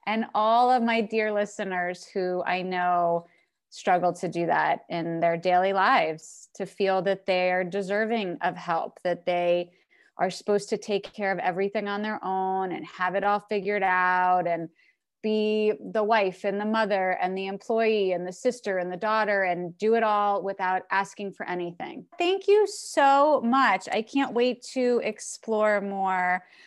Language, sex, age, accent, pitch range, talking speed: English, female, 20-39, American, 180-215 Hz, 175 wpm